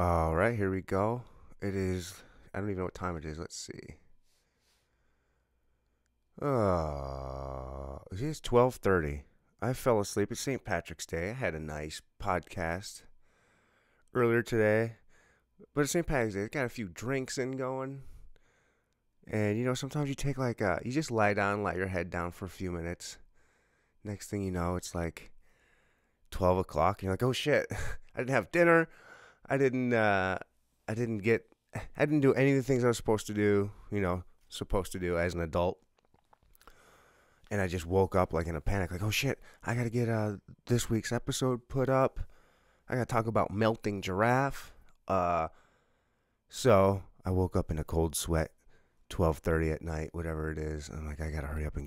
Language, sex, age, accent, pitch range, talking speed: English, male, 30-49, American, 80-115 Hz, 185 wpm